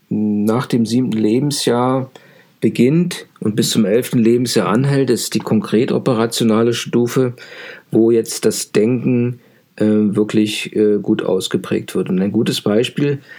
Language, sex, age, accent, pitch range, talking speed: German, male, 50-69, German, 110-135 Hz, 135 wpm